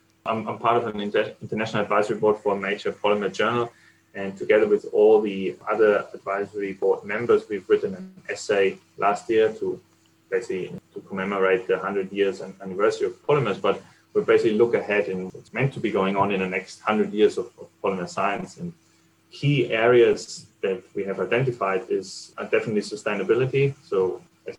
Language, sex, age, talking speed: English, male, 20-39, 170 wpm